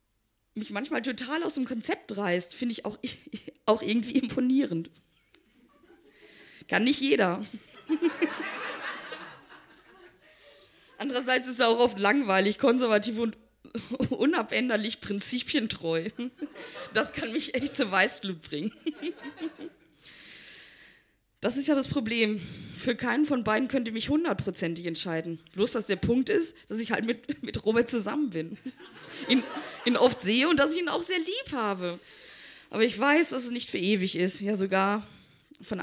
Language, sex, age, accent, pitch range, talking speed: German, female, 20-39, German, 185-265 Hz, 140 wpm